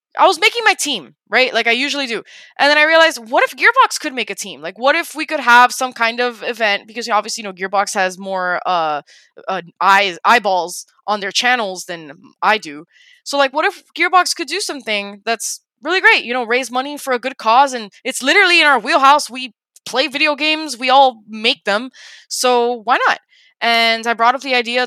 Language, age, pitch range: English, 20-39, 200-260 Hz